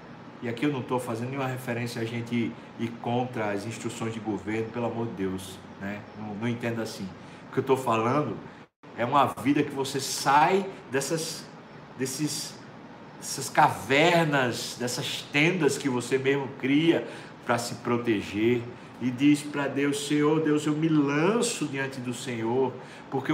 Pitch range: 110-145 Hz